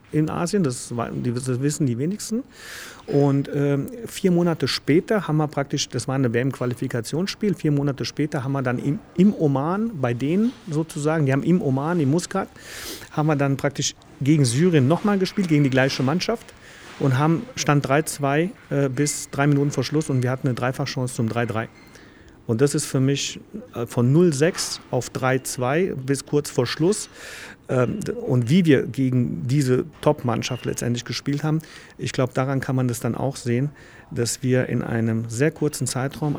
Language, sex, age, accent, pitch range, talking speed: German, male, 40-59, German, 125-155 Hz, 170 wpm